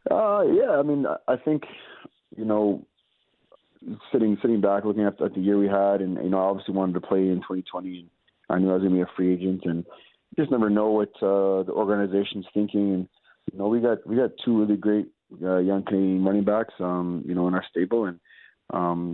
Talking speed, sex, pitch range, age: 225 wpm, male, 85-95 Hz, 20-39